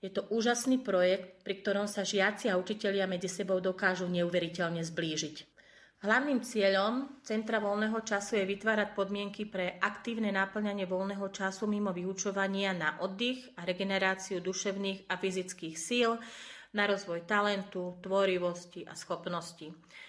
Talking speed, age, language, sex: 130 wpm, 30-49, Slovak, female